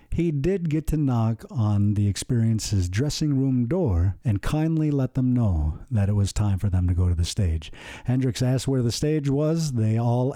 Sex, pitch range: male, 105-140 Hz